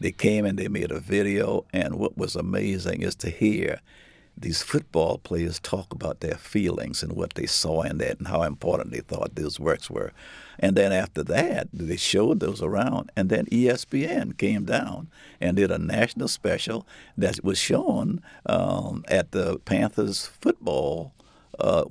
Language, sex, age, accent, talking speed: English, male, 60-79, American, 170 wpm